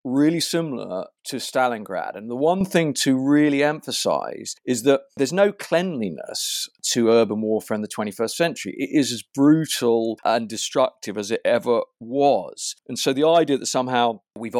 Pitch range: 110-145 Hz